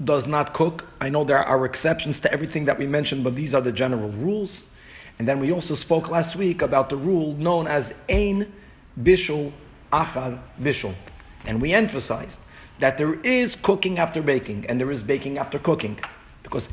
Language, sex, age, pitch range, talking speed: English, male, 40-59, 130-170 Hz, 185 wpm